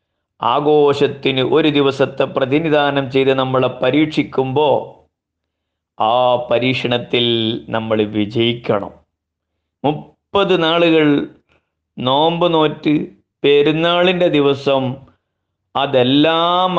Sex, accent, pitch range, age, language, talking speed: male, native, 120-145 Hz, 30-49, Malayalam, 65 wpm